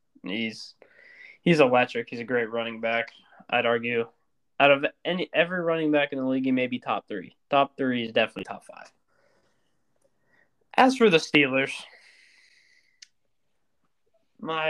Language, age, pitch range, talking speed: English, 10-29, 115-160 Hz, 145 wpm